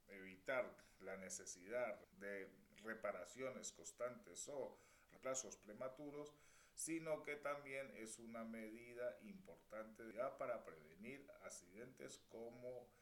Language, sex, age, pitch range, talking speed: Spanish, male, 40-59, 100-125 Hz, 90 wpm